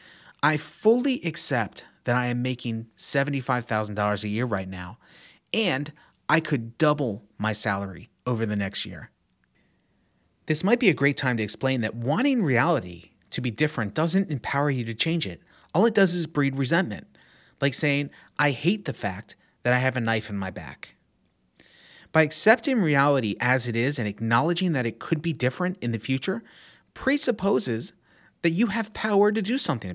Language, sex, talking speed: English, male, 170 wpm